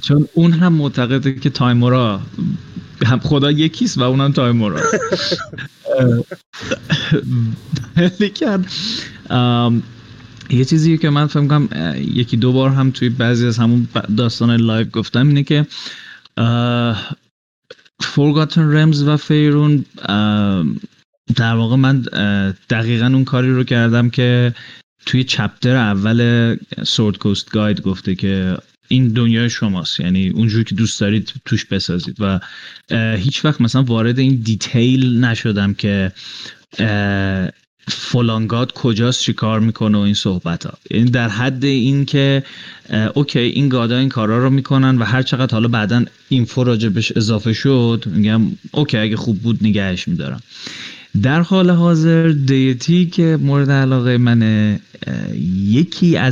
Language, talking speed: Persian, 125 wpm